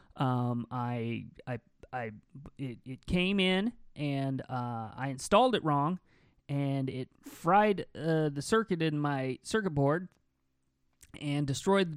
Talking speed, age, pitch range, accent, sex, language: 135 wpm, 30-49, 120-160 Hz, American, male, English